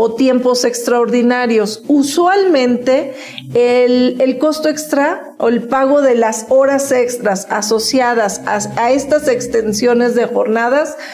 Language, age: Spanish, 40-59